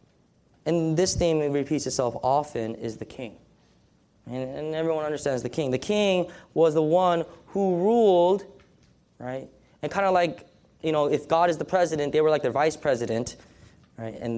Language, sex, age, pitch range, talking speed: English, male, 20-39, 145-235 Hz, 175 wpm